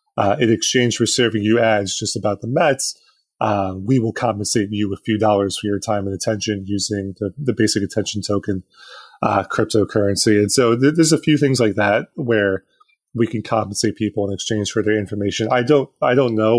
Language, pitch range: English, 105-120 Hz